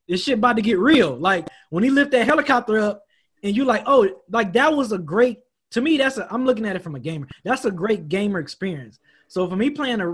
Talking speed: 255 wpm